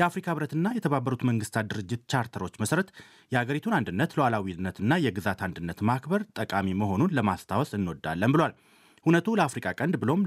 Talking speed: 135 wpm